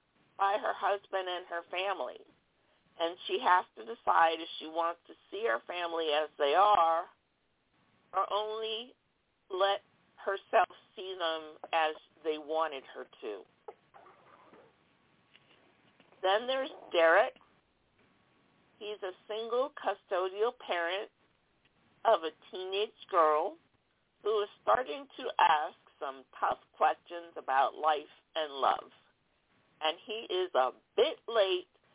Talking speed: 115 wpm